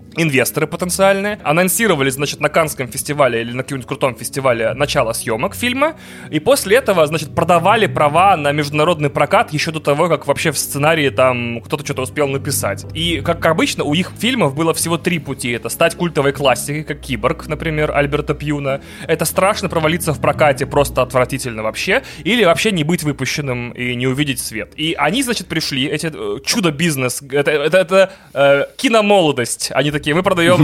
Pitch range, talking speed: 135-170 Hz, 175 wpm